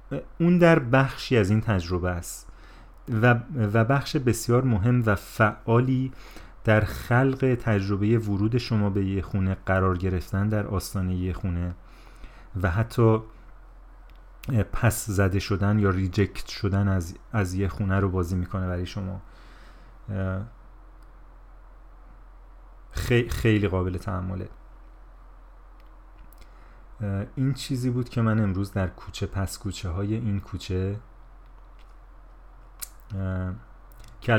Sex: male